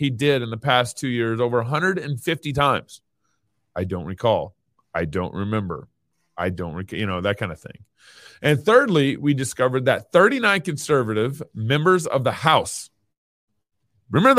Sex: male